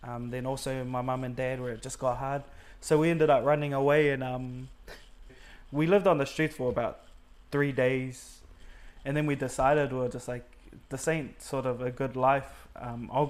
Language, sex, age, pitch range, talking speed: English, male, 20-39, 125-140 Hz, 210 wpm